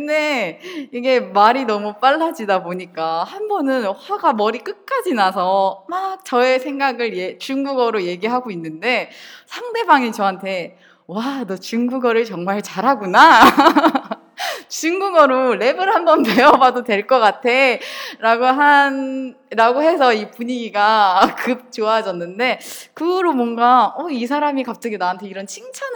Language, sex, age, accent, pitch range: Chinese, female, 20-39, Korean, 200-280 Hz